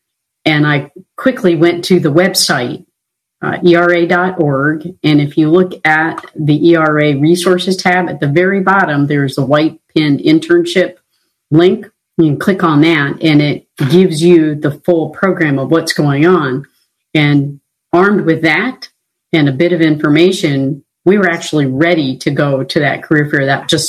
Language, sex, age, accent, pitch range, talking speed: English, female, 40-59, American, 145-175 Hz, 165 wpm